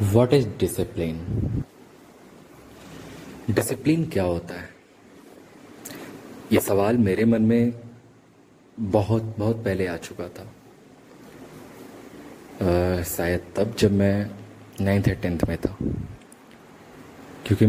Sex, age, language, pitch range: male, 30-49, Hindi, 90-115 Hz